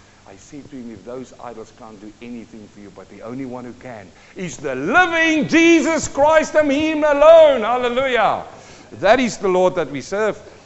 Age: 50-69